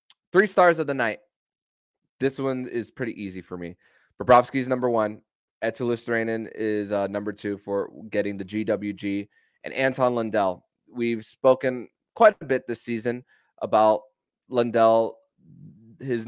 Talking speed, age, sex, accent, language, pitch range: 135 wpm, 20-39, male, American, English, 100-120 Hz